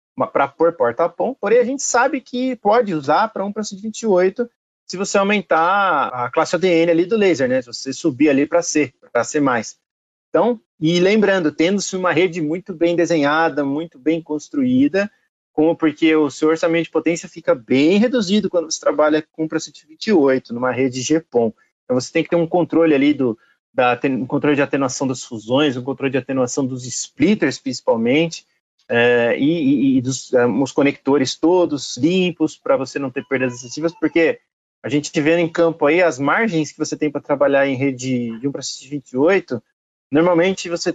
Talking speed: 185 wpm